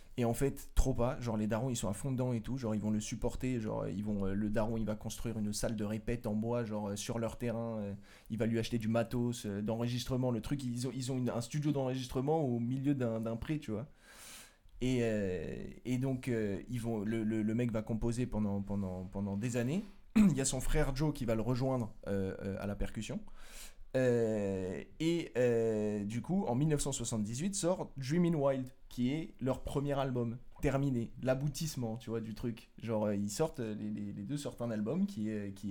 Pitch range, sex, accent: 105-130 Hz, male, French